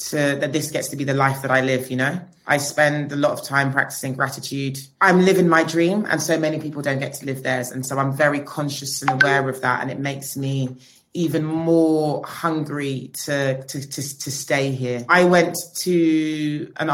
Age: 30-49